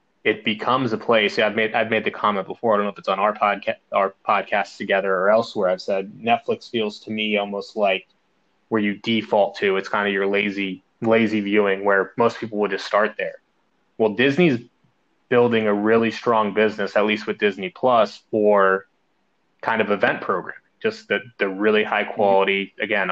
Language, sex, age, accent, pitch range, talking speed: English, male, 20-39, American, 100-110 Hz, 200 wpm